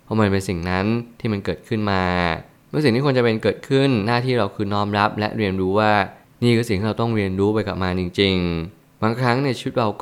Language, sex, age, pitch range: Thai, male, 20-39, 100-120 Hz